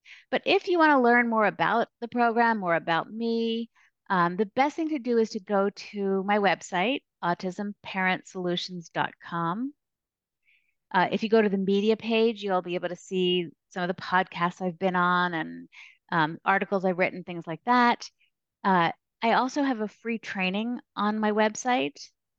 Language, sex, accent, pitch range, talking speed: English, female, American, 175-215 Hz, 170 wpm